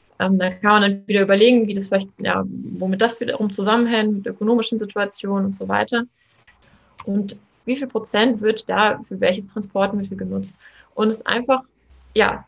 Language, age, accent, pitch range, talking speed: German, 20-39, German, 195-230 Hz, 175 wpm